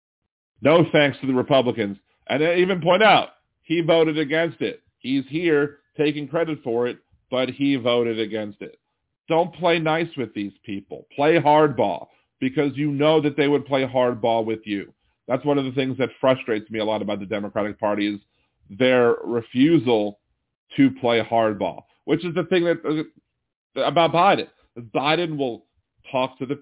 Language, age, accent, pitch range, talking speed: English, 40-59, American, 110-150 Hz, 170 wpm